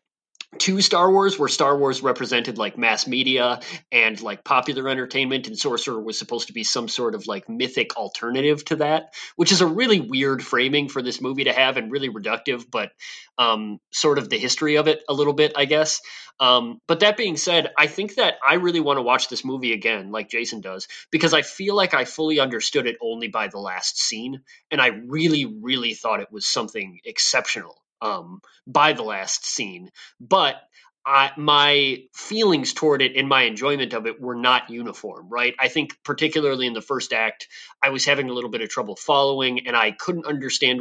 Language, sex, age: English, male, 30-49